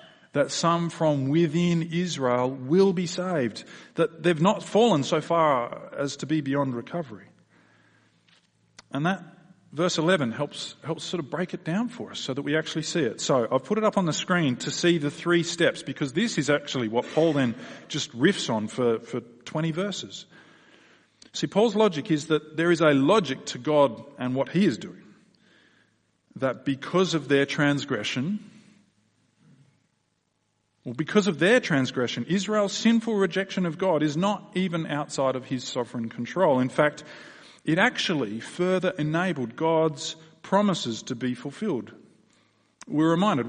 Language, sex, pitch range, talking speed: English, male, 130-180 Hz, 160 wpm